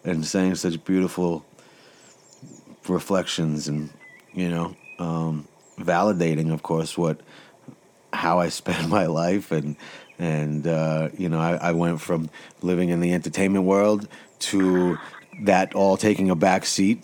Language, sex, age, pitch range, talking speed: English, male, 30-49, 80-90 Hz, 135 wpm